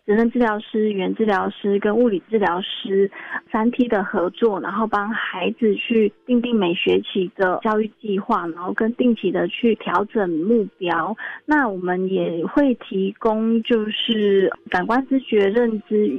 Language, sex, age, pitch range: Chinese, female, 20-39, 195-240 Hz